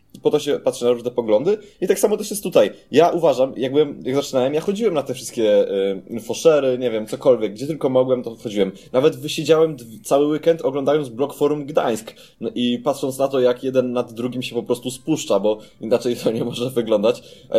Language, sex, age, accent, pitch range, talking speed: Polish, male, 20-39, native, 125-160 Hz, 205 wpm